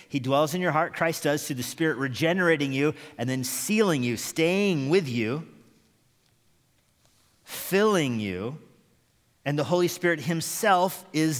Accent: American